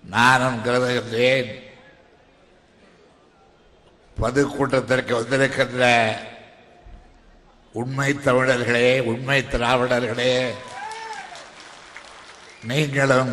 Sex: male